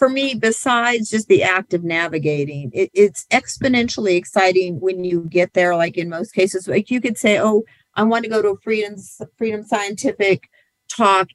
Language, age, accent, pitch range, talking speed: English, 50-69, American, 165-215 Hz, 180 wpm